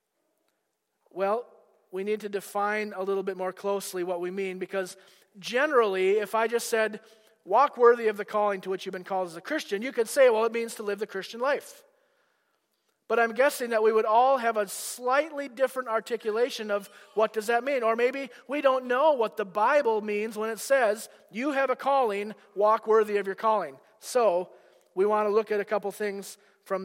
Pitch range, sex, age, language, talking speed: 195-230 Hz, male, 40-59, English, 205 wpm